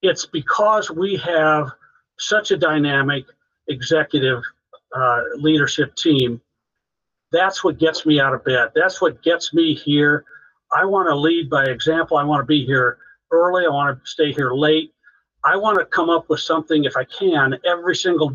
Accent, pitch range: American, 150-195 Hz